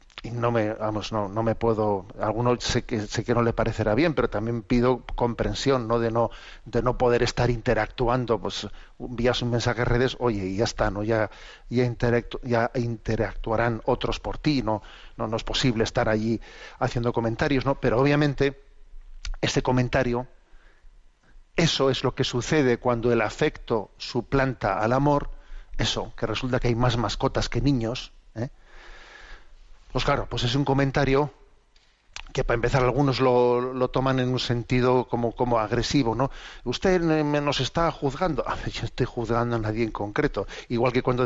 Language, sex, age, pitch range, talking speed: Spanish, male, 40-59, 115-135 Hz, 170 wpm